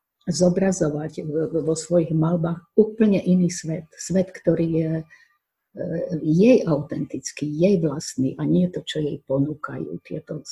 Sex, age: female, 50-69